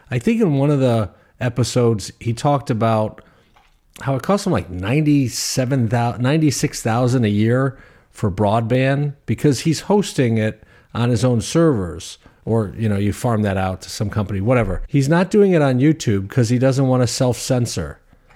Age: 50-69